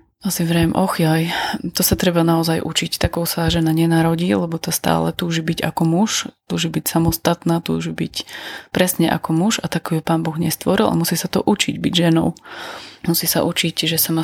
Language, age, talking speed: Slovak, 20-39, 195 wpm